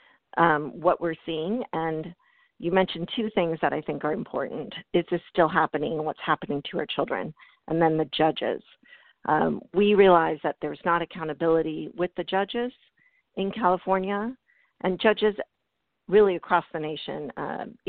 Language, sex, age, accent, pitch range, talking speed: English, female, 50-69, American, 165-205 Hz, 155 wpm